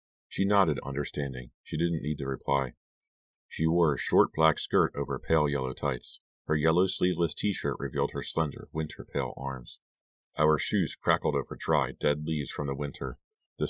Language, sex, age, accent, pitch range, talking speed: English, male, 40-59, American, 70-80 Hz, 170 wpm